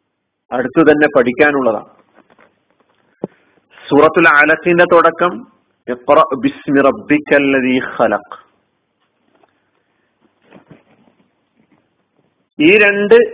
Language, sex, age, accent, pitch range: Malayalam, male, 50-69, native, 155-195 Hz